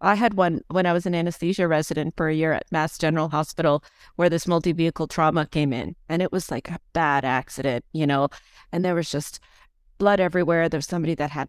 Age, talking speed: 40-59, 215 wpm